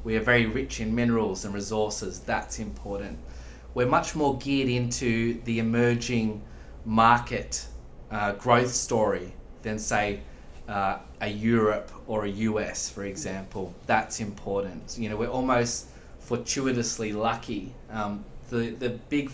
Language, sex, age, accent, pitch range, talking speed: English, male, 20-39, Australian, 105-120 Hz, 135 wpm